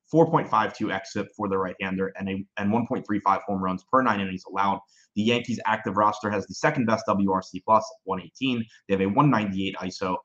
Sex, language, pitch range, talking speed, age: male, English, 100-120 Hz, 180 wpm, 20-39